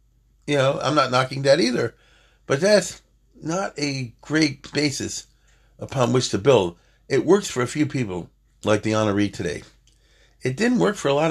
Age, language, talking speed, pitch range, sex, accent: 40-59, English, 175 wpm, 100-130 Hz, male, American